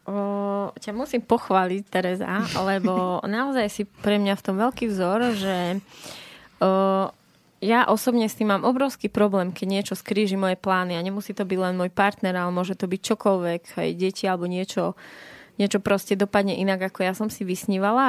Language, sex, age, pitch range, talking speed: Slovak, female, 20-39, 185-210 Hz, 175 wpm